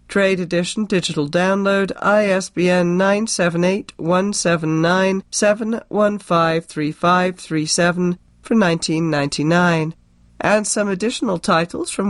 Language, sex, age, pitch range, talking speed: English, female, 40-59, 155-190 Hz, 65 wpm